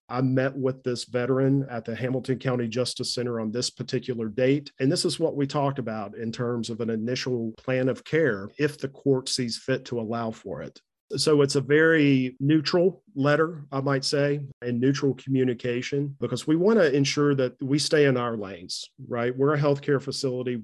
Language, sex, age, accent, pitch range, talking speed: English, male, 40-59, American, 115-135 Hz, 195 wpm